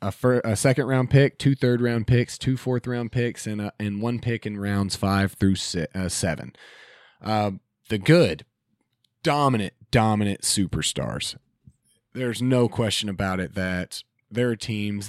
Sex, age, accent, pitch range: male, 30-49, American, 100-125 Hz